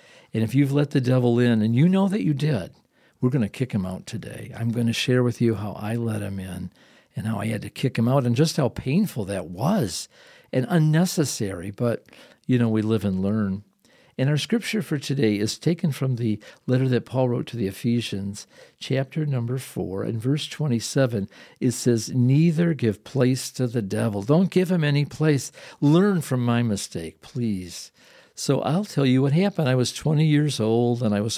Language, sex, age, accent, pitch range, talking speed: English, male, 50-69, American, 110-145 Hz, 205 wpm